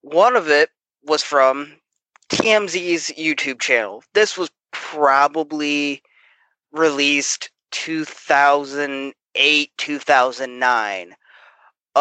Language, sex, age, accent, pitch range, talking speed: English, male, 20-39, American, 145-190 Hz, 65 wpm